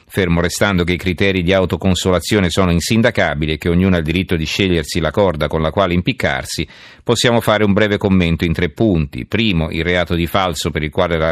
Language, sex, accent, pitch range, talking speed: Italian, male, native, 85-100 Hz, 210 wpm